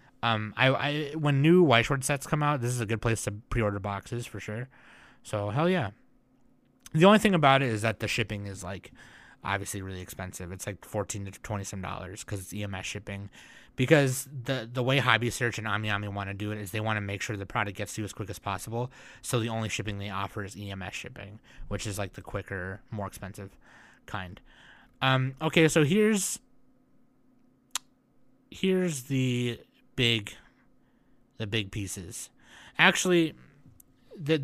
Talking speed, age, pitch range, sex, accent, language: 180 wpm, 20-39, 105-135 Hz, male, American, English